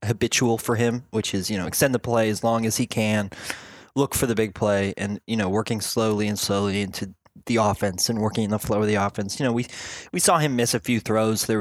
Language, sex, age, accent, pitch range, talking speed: English, male, 20-39, American, 105-120 Hz, 255 wpm